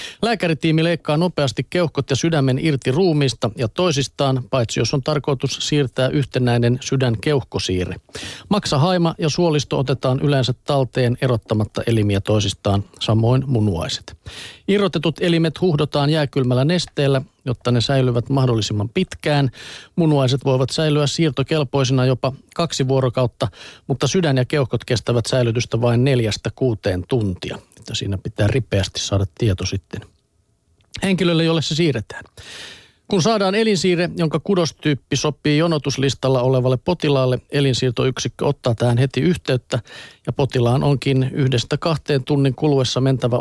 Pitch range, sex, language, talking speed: 120-150 Hz, male, Finnish, 120 wpm